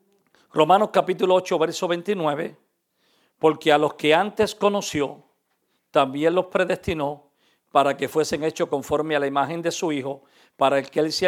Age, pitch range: 50-69, 145-180 Hz